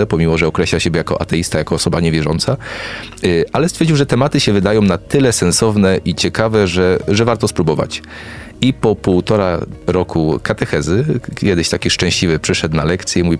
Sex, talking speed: male, 160 wpm